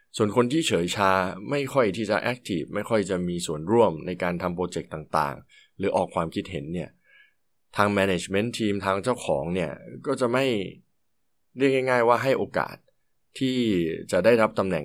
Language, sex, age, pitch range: Thai, male, 20-39, 85-115 Hz